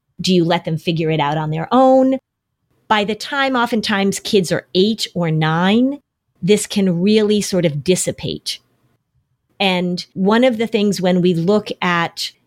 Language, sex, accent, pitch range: English, female, American, 170-220 Hz